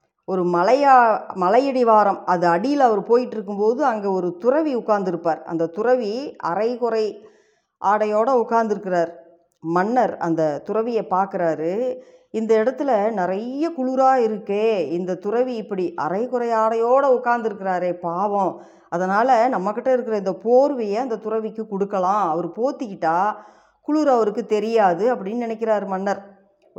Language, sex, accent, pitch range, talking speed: Tamil, female, native, 185-245 Hz, 110 wpm